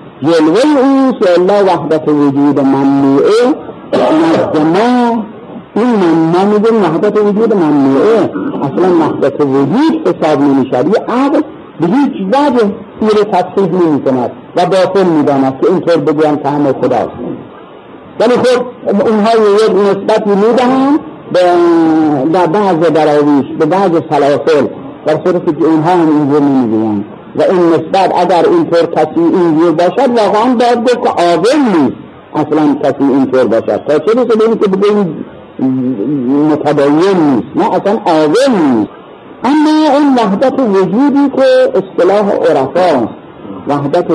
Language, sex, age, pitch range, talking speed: Persian, male, 60-79, 145-220 Hz, 90 wpm